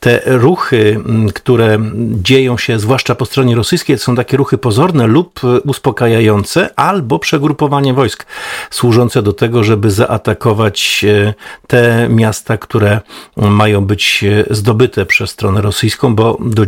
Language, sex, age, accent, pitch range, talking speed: Polish, male, 50-69, native, 105-125 Hz, 120 wpm